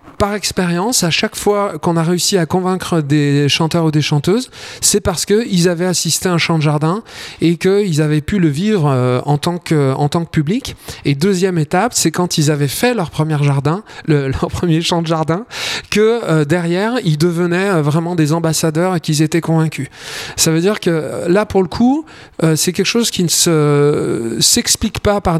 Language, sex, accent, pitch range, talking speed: French, male, French, 155-190 Hz, 200 wpm